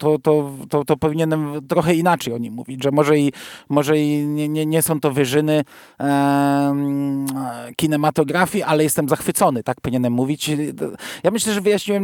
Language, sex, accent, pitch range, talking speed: Polish, male, native, 130-155 Hz, 165 wpm